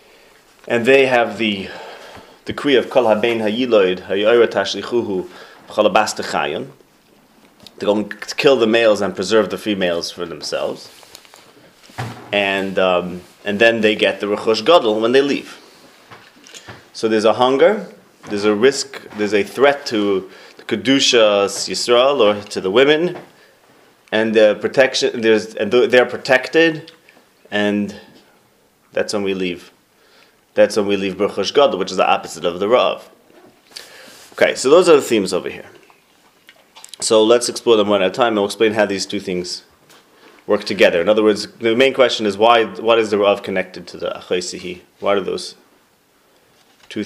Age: 30-49